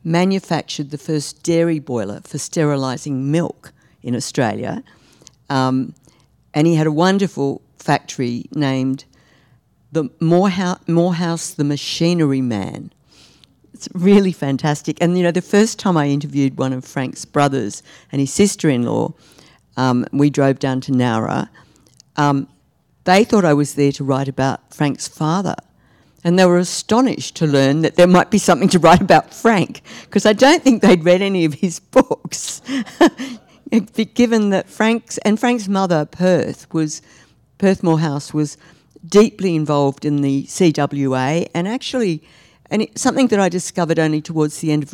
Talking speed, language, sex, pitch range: 150 wpm, English, female, 140-185 Hz